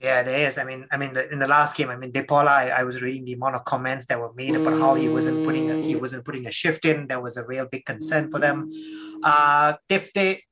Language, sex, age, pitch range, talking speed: English, male, 20-39, 135-180 Hz, 280 wpm